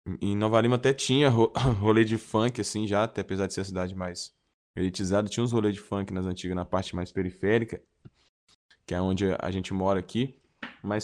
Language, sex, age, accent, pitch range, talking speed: Portuguese, male, 10-29, Brazilian, 100-125 Hz, 200 wpm